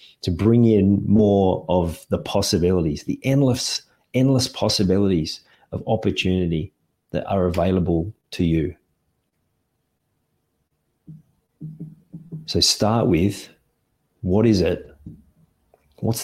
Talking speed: 90 wpm